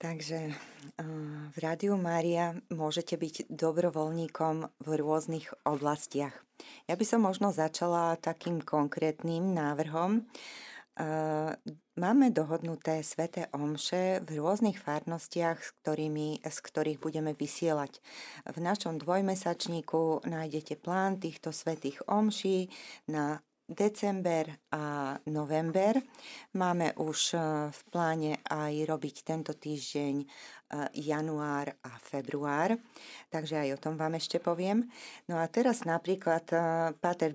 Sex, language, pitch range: female, Slovak, 150-175 Hz